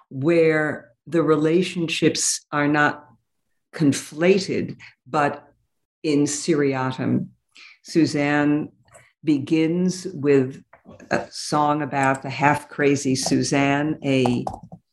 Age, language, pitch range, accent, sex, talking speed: 60-79, English, 135-165 Hz, American, female, 75 wpm